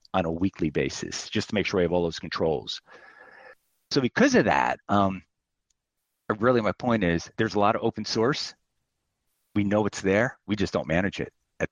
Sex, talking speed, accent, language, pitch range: male, 195 wpm, American, English, 90-120 Hz